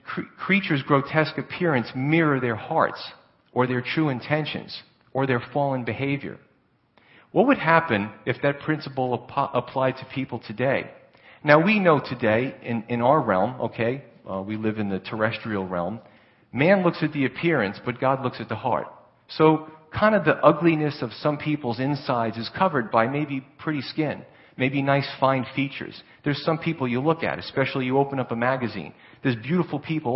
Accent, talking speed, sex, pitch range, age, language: American, 170 wpm, male, 120-150 Hz, 40-59, English